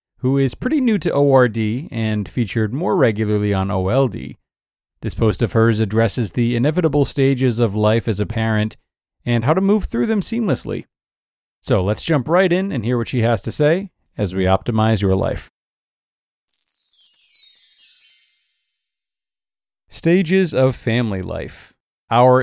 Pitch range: 100-135 Hz